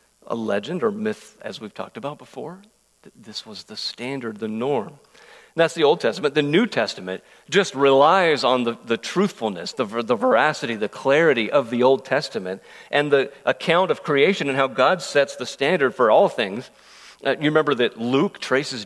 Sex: male